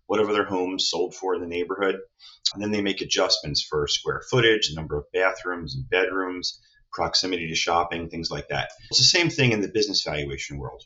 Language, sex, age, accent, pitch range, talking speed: English, male, 30-49, American, 85-115 Hz, 205 wpm